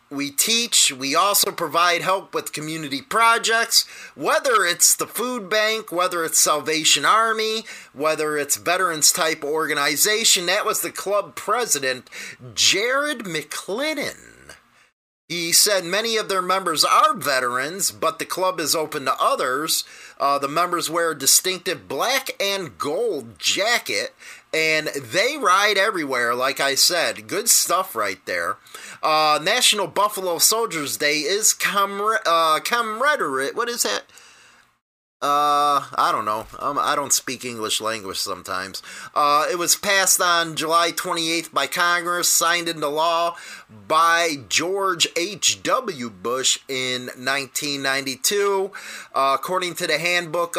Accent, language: American, English